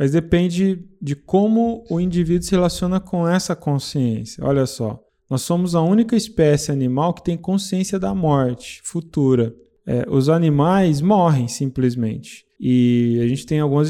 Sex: male